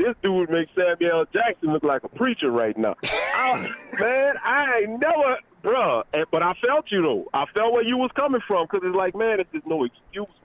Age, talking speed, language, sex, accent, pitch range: 40-59, 210 wpm, English, male, American, 130-185 Hz